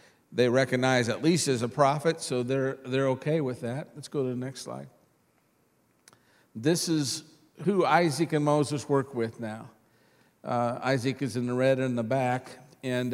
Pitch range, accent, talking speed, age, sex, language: 120-145 Hz, American, 175 wpm, 50-69, male, English